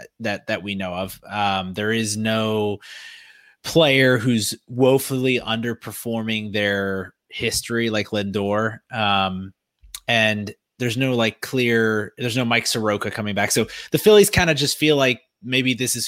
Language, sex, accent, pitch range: English, male, American, 100-115 Hz